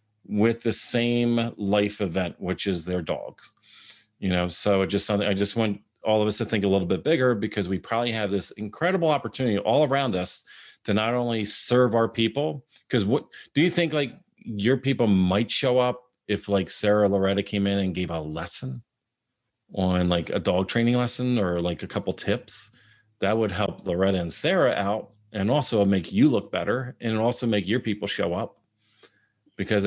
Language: English